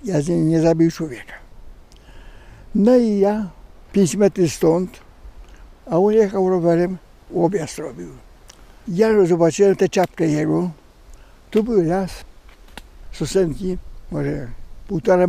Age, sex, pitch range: 60-79, male, 160-200 Hz